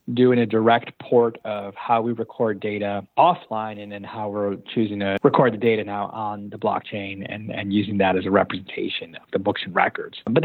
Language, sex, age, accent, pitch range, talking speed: English, male, 30-49, American, 105-125 Hz, 205 wpm